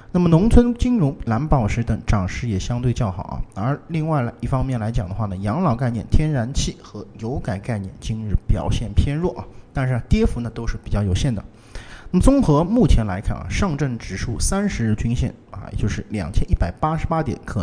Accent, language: native, Chinese